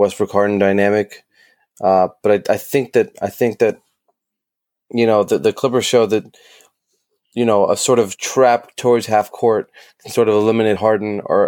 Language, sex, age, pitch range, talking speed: English, male, 20-39, 100-125 Hz, 180 wpm